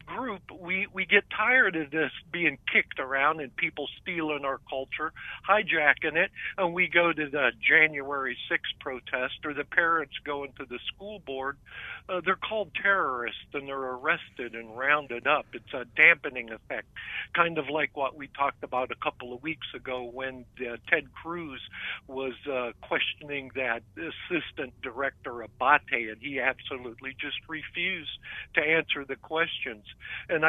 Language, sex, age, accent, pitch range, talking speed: English, male, 50-69, American, 130-165 Hz, 155 wpm